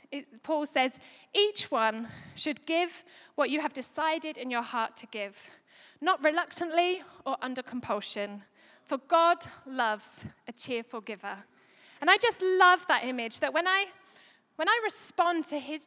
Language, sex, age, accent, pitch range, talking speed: English, female, 10-29, British, 250-355 Hz, 155 wpm